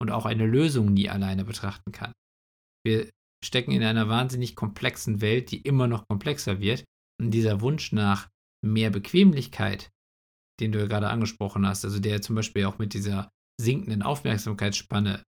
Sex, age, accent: male, 50-69, German